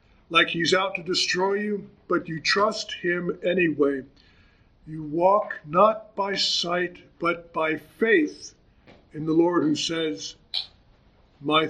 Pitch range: 150-195 Hz